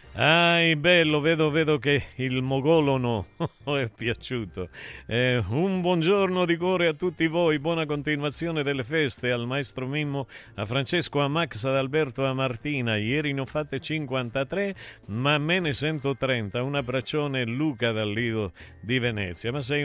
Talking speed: 155 wpm